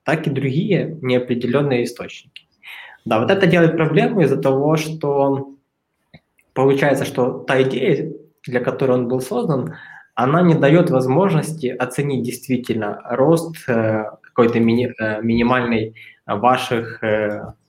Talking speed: 110 wpm